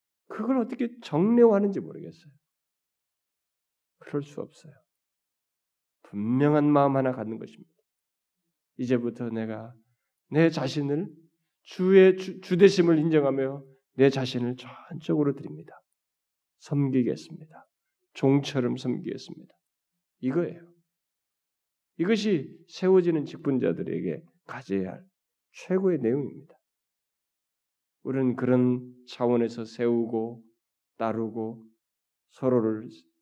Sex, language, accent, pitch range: male, Korean, native, 110-165 Hz